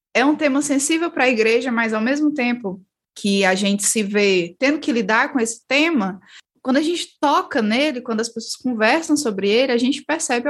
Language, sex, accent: Portuguese, female, Brazilian